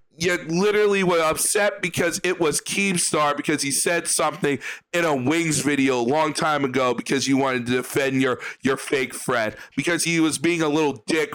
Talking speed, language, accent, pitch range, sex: 190 wpm, English, American, 145-180 Hz, male